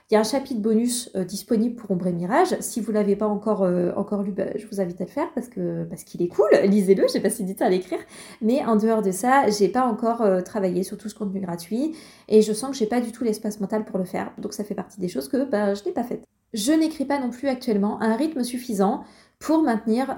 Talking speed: 275 wpm